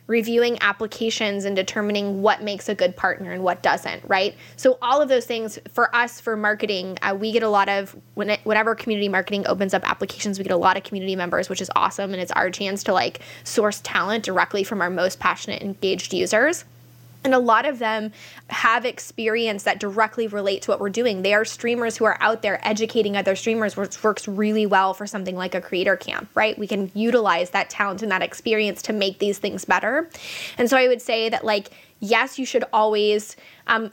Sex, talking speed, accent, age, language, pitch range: female, 215 wpm, American, 10-29, English, 200-230 Hz